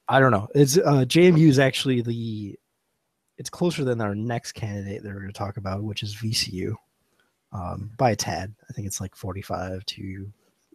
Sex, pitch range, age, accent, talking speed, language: male, 100-125 Hz, 20-39, American, 190 wpm, English